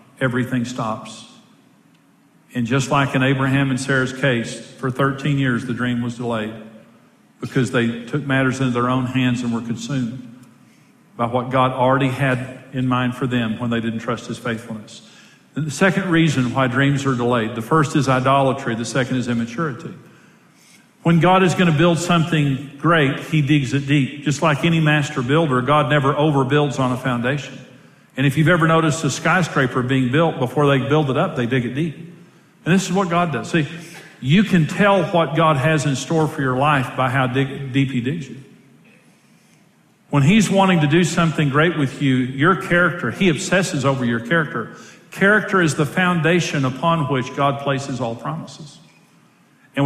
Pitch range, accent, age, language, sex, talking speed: 125-160 Hz, American, 50-69, English, male, 180 wpm